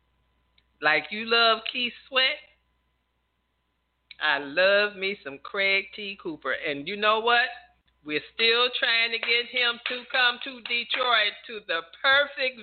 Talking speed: 140 wpm